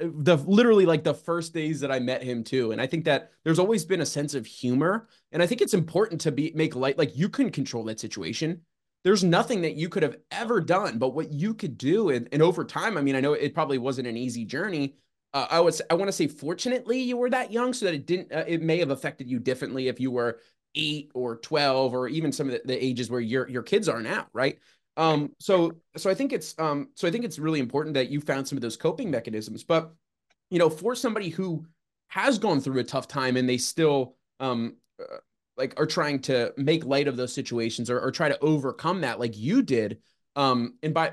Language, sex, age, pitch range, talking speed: English, male, 20-39, 130-170 Hz, 240 wpm